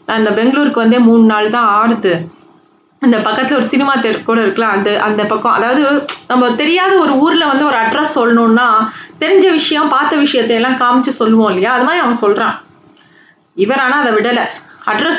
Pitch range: 205-255 Hz